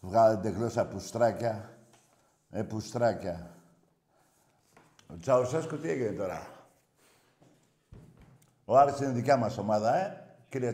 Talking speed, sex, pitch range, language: 105 wpm, male, 115-195 Hz, Greek